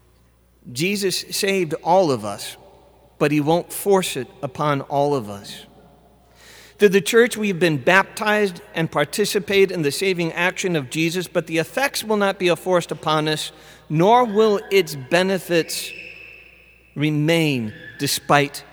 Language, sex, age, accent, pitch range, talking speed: English, male, 40-59, American, 130-185 Hz, 140 wpm